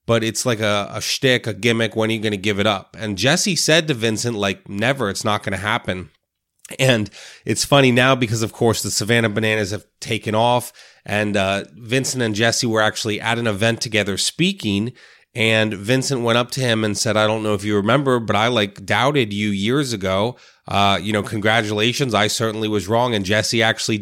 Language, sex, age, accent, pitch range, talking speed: English, male, 30-49, American, 100-120 Hz, 210 wpm